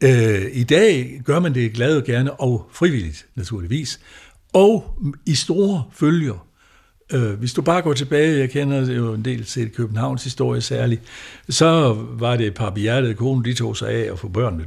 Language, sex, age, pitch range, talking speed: Danish, male, 60-79, 100-135 Hz, 170 wpm